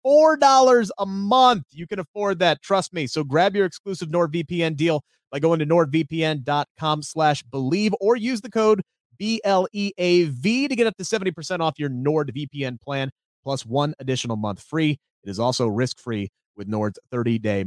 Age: 30-49